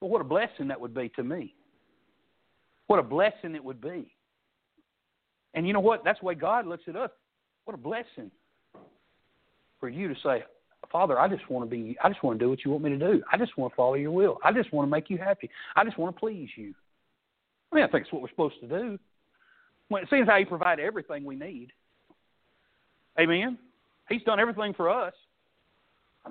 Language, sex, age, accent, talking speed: English, male, 60-79, American, 220 wpm